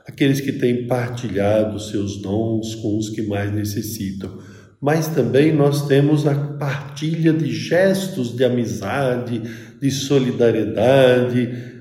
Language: Portuguese